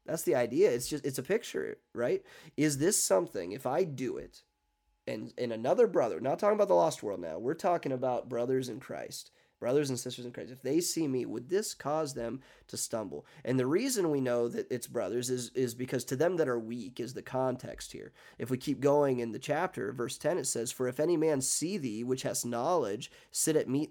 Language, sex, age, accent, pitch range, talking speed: English, male, 30-49, American, 125-160 Hz, 230 wpm